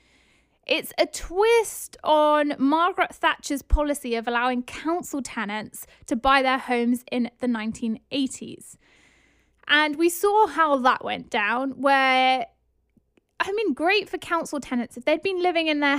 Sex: female